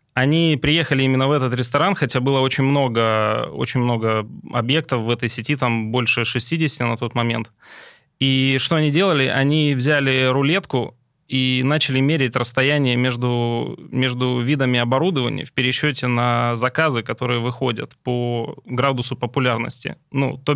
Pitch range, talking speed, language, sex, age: 125-145 Hz, 135 wpm, Russian, male, 20-39